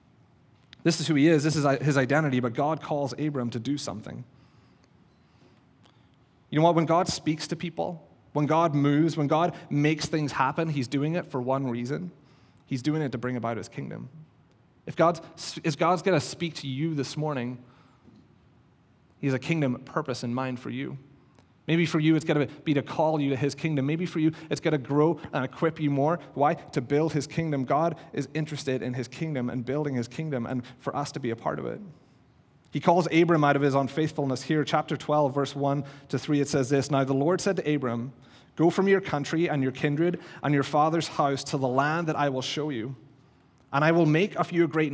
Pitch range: 135-160 Hz